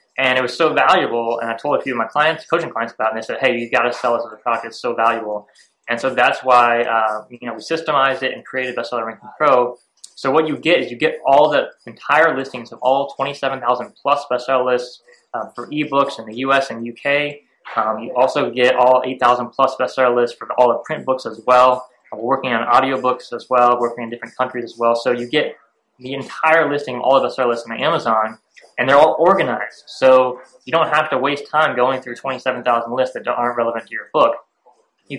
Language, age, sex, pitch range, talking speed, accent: English, 20-39, male, 120-140 Hz, 230 wpm, American